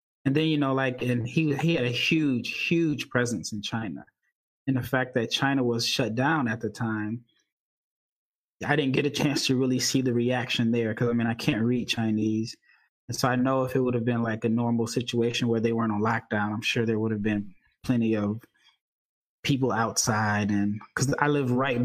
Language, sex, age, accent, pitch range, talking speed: English, male, 20-39, American, 115-130 Hz, 210 wpm